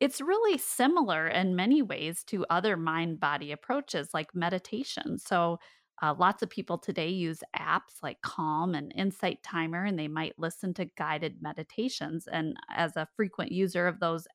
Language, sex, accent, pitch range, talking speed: English, female, American, 160-210 Hz, 165 wpm